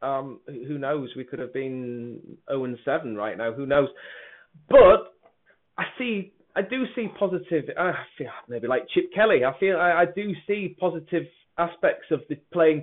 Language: English